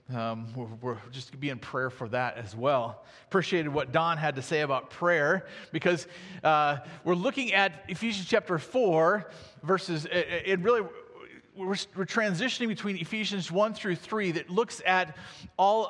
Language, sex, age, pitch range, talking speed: English, male, 40-59, 170-215 Hz, 165 wpm